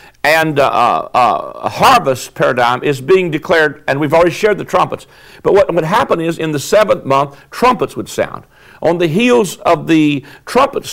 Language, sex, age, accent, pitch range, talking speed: English, male, 60-79, American, 140-180 Hz, 180 wpm